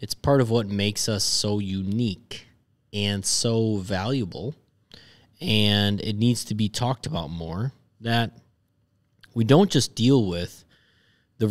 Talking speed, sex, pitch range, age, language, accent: 135 wpm, male, 100-125 Hz, 20-39, English, American